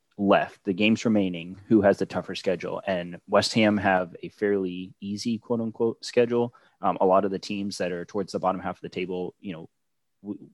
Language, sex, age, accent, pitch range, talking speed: English, male, 20-39, American, 90-105 Hz, 210 wpm